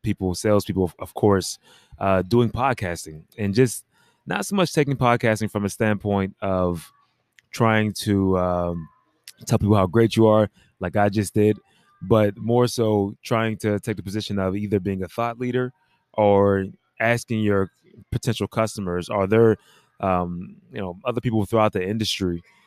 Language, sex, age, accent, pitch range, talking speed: English, male, 20-39, American, 95-110 Hz, 155 wpm